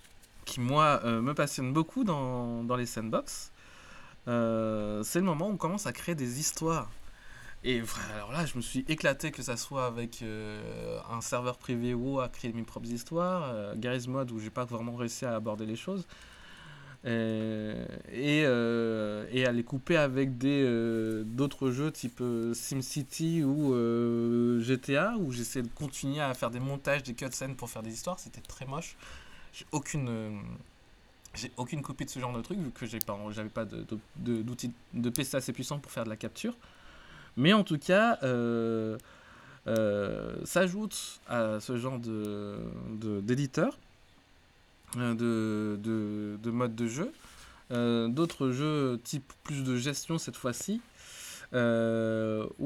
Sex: male